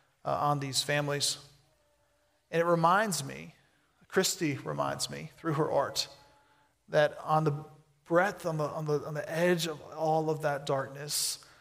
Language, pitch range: English, 145-165 Hz